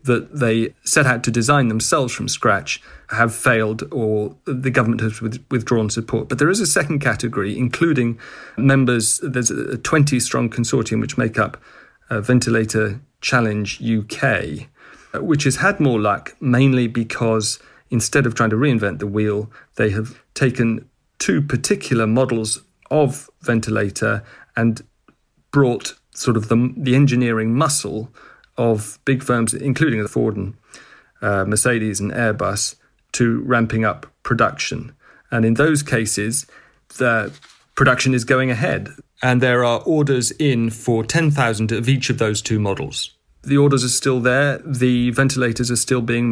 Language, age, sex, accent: English, 40-59, male, British